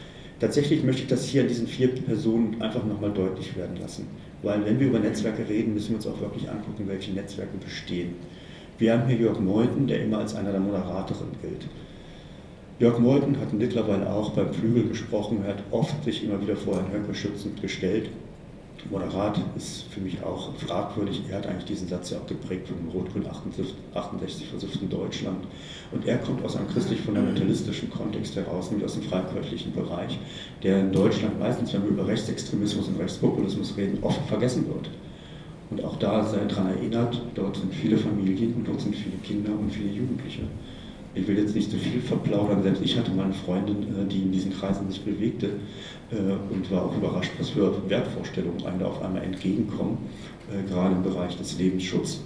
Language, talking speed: German, 185 wpm